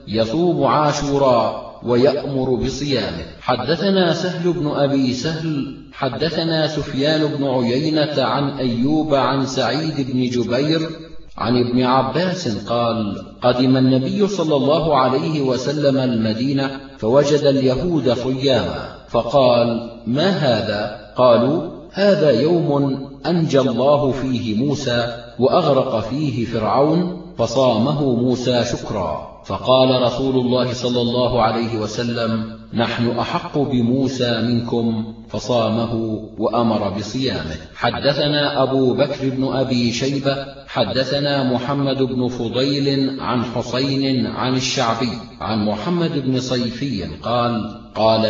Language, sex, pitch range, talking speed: Arabic, male, 120-140 Hz, 105 wpm